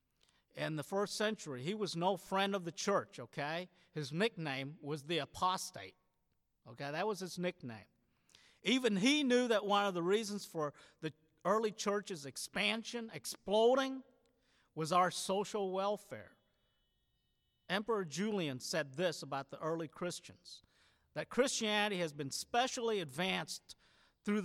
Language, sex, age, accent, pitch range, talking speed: English, male, 50-69, American, 155-215 Hz, 135 wpm